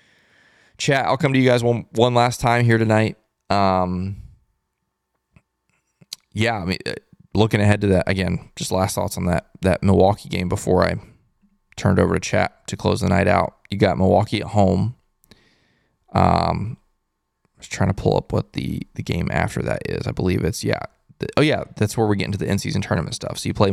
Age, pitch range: 20-39, 90-110 Hz